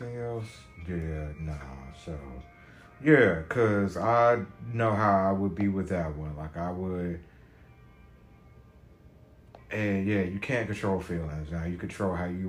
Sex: male